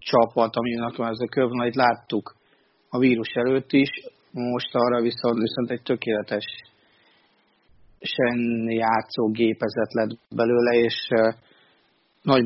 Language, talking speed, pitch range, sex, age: Hungarian, 105 wpm, 110-125 Hz, male, 30-49